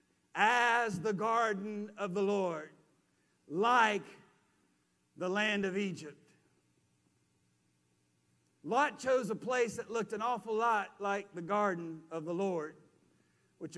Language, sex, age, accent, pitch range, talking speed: English, male, 50-69, American, 160-225 Hz, 120 wpm